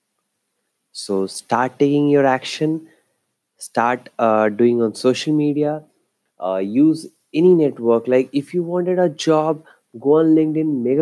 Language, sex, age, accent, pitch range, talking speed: Hindi, male, 30-49, native, 125-160 Hz, 135 wpm